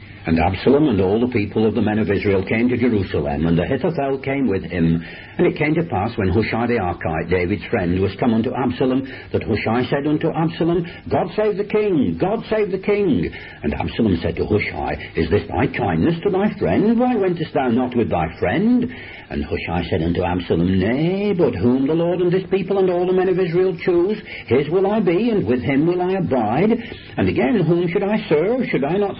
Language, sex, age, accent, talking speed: English, male, 60-79, British, 215 wpm